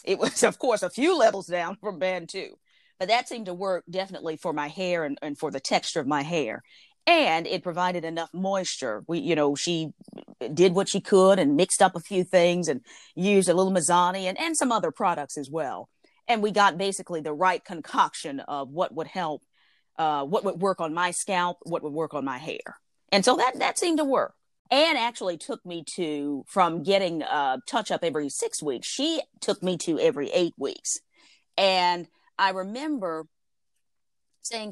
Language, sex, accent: English, female, American